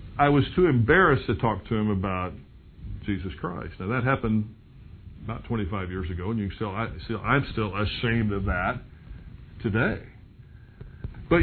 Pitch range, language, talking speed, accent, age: 115-175 Hz, English, 165 wpm, American, 50-69